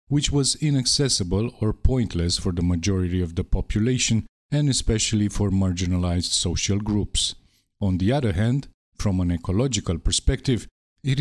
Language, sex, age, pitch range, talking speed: English, male, 50-69, 95-120 Hz, 140 wpm